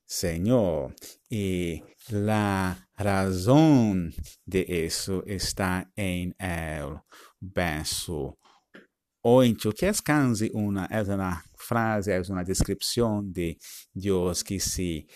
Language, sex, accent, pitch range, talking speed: Spanish, male, Italian, 85-100 Hz, 100 wpm